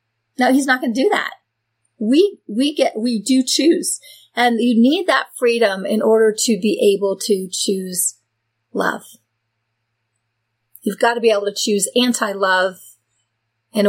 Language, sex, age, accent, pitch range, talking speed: English, female, 40-59, American, 200-265 Hz, 150 wpm